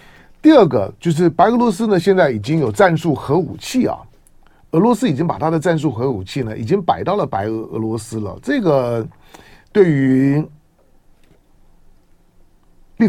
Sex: male